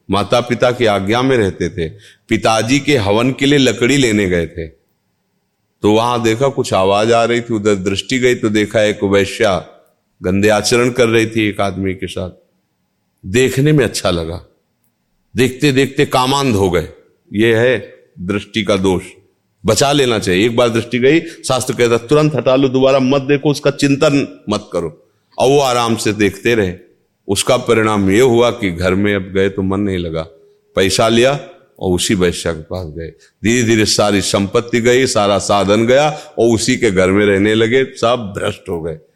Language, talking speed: Hindi, 180 wpm